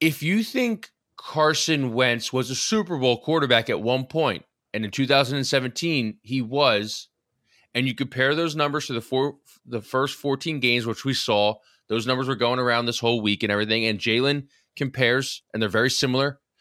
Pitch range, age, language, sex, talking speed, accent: 105-130 Hz, 20-39, English, male, 180 wpm, American